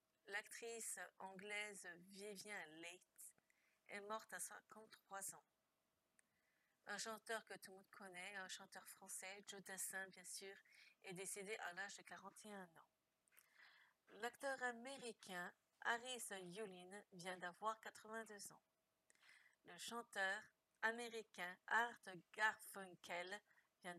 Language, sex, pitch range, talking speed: French, female, 190-225 Hz, 110 wpm